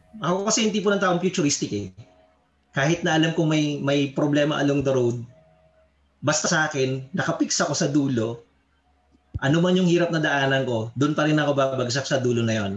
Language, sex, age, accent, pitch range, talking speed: Filipino, male, 20-39, native, 110-160 Hz, 195 wpm